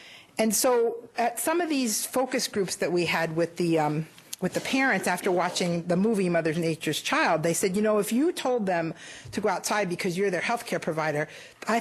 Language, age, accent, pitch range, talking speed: English, 50-69, American, 175-235 Hz, 215 wpm